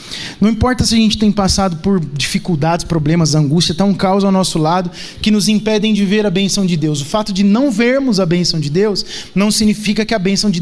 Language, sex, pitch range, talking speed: Portuguese, male, 195-265 Hz, 230 wpm